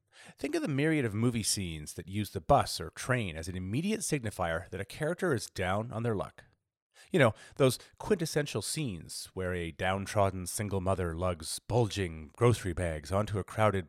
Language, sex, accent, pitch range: English, male, American, 95-130 Hz